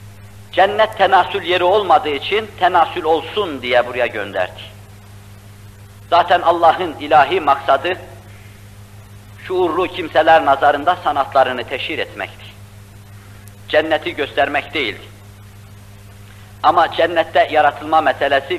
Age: 50-69